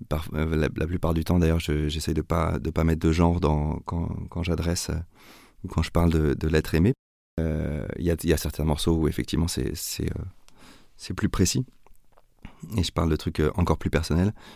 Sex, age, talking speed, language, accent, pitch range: male, 30-49, 205 wpm, French, French, 80-95 Hz